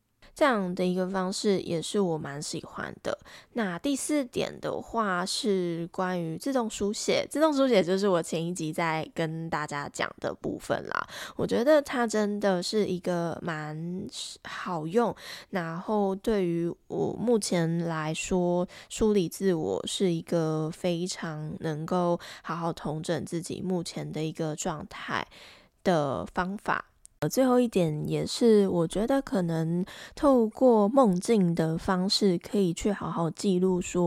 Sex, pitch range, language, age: female, 165-205 Hz, English, 20-39